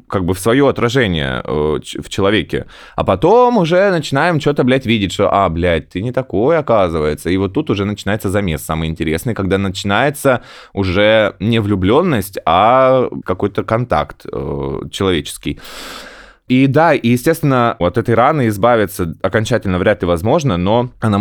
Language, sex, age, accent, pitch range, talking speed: Russian, male, 20-39, native, 90-115 Hz, 155 wpm